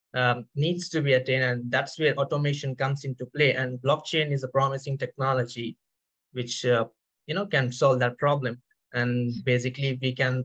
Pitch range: 125-150 Hz